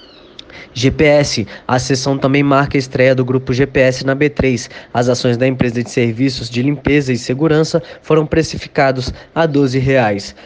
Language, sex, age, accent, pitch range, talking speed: Portuguese, male, 20-39, Brazilian, 130-145 Hz, 160 wpm